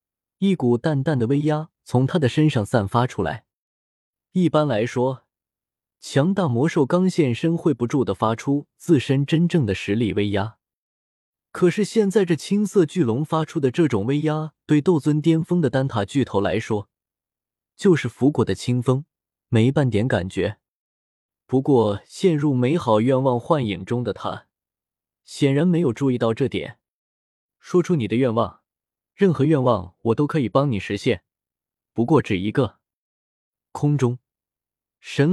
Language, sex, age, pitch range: Chinese, male, 20-39, 110-160 Hz